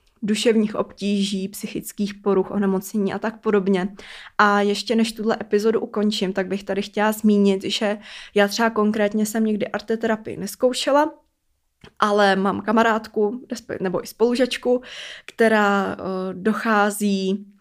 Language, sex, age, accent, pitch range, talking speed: Czech, female, 20-39, native, 195-215 Hz, 120 wpm